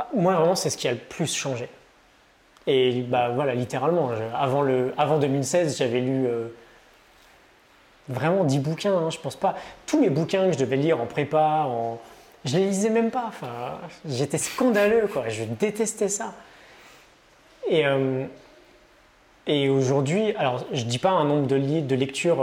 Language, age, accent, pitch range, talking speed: French, 20-39, French, 130-175 Hz, 175 wpm